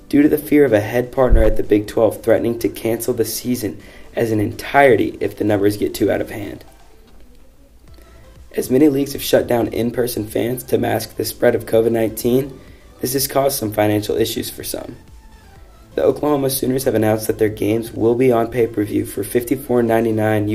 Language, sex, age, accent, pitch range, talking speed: English, male, 20-39, American, 110-130 Hz, 185 wpm